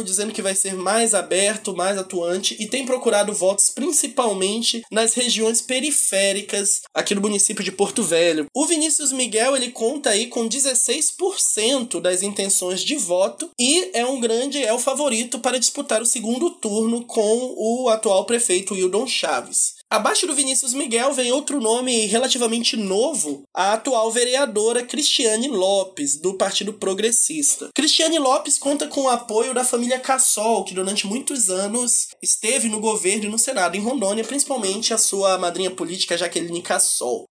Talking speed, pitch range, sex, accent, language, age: 155 wpm, 195-260 Hz, male, Brazilian, Portuguese, 20-39